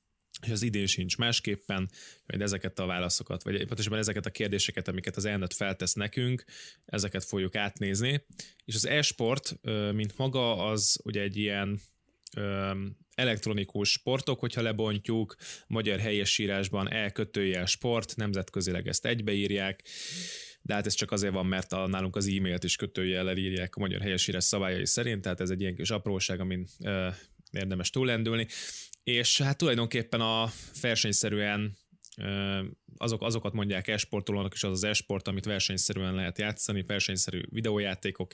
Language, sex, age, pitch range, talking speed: Hungarian, male, 20-39, 95-110 Hz, 140 wpm